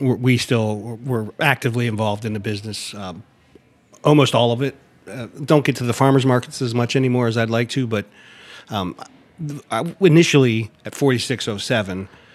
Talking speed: 160 wpm